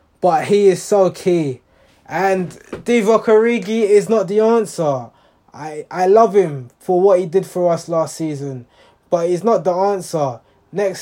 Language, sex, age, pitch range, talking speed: English, male, 20-39, 165-210 Hz, 165 wpm